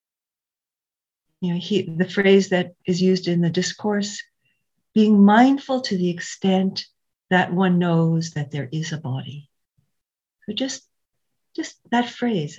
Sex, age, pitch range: female, 50-69, 155-200 Hz